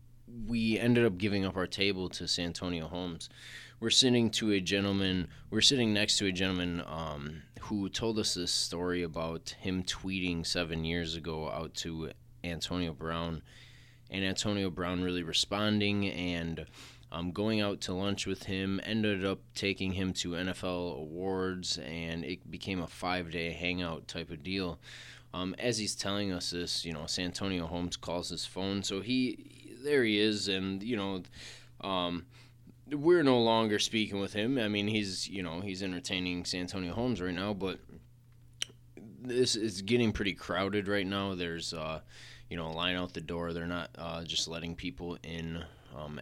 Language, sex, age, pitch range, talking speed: English, male, 20-39, 85-105 Hz, 175 wpm